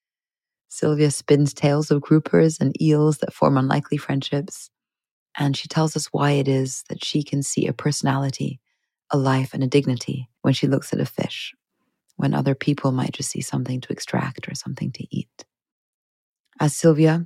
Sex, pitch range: female, 130-150 Hz